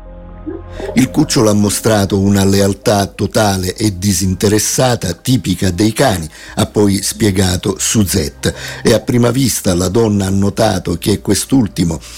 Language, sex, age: Italian, male, 50-69